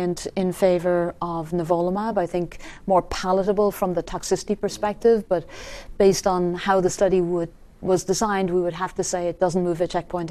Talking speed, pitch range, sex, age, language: 180 wpm, 175-200 Hz, female, 40-59, English